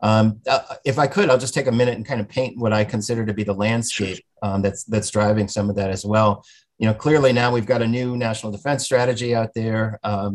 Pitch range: 105-125 Hz